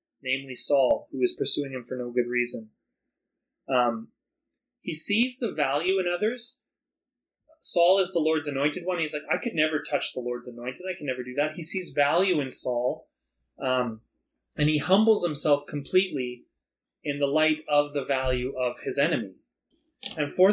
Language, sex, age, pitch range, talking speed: English, male, 30-49, 145-190 Hz, 170 wpm